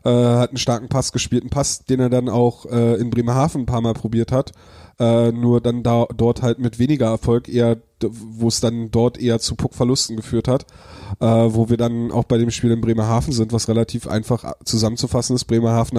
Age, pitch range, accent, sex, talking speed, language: 20-39, 110-125 Hz, German, male, 210 wpm, German